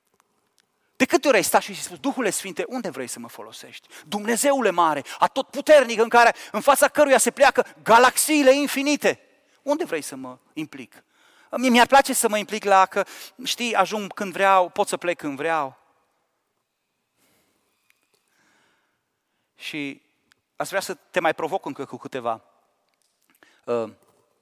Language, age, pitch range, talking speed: Romanian, 30-49, 175-255 Hz, 145 wpm